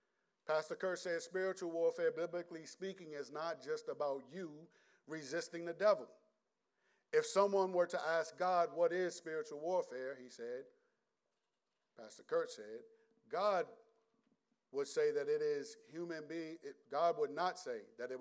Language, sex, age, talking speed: English, male, 50-69, 145 wpm